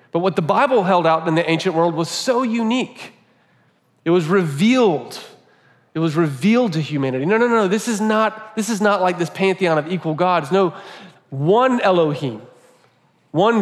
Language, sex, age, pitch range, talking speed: English, male, 40-59, 145-185 Hz, 170 wpm